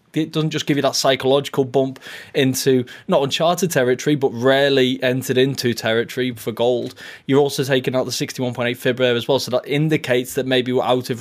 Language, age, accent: English, 20-39, British